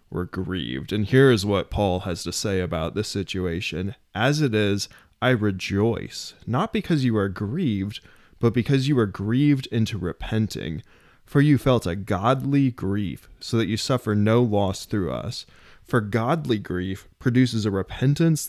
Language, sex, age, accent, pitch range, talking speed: English, male, 20-39, American, 95-120 Hz, 160 wpm